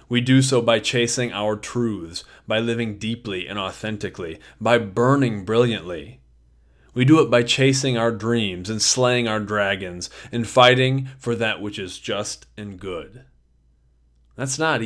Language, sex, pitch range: English, male, 85-125 Hz